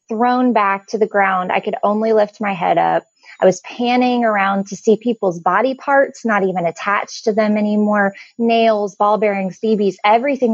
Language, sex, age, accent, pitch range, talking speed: English, female, 20-39, American, 205-250 Hz, 180 wpm